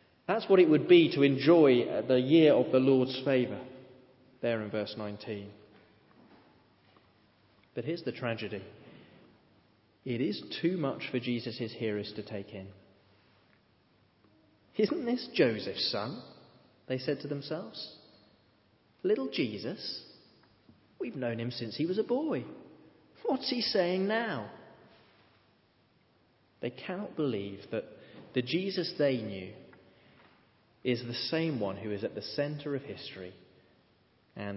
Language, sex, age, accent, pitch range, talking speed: English, male, 30-49, British, 105-145 Hz, 125 wpm